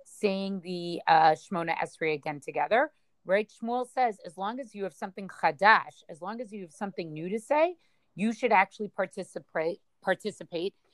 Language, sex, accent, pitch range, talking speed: English, female, American, 170-205 Hz, 170 wpm